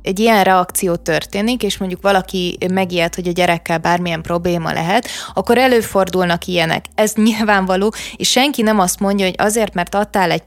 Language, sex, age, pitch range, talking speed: Hungarian, female, 20-39, 185-225 Hz, 165 wpm